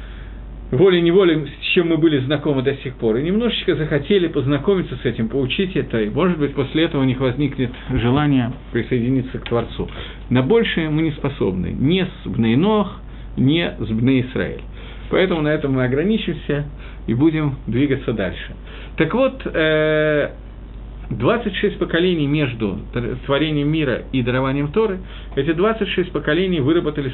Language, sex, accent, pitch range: Russian, male, native, 125-170 Hz